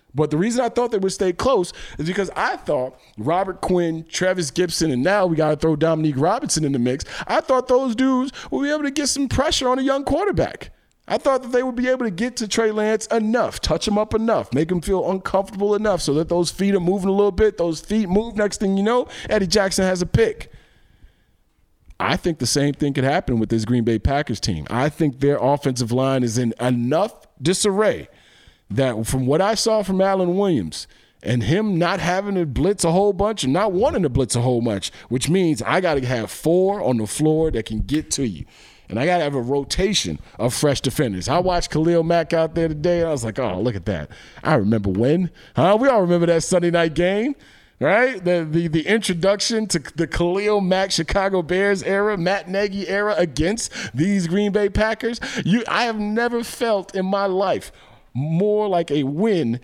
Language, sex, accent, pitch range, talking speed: English, male, American, 145-205 Hz, 215 wpm